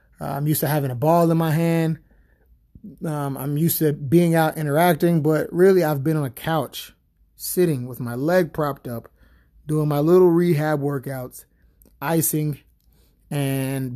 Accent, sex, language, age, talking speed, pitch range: American, male, English, 30-49, 155 wpm, 130-155 Hz